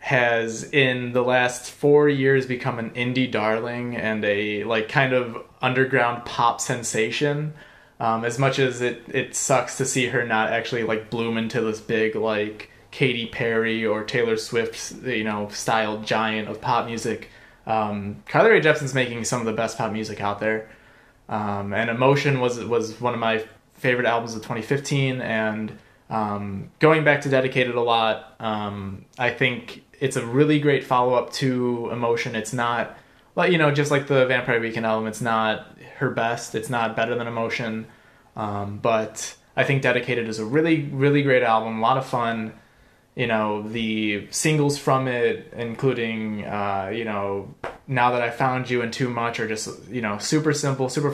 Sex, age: male, 20-39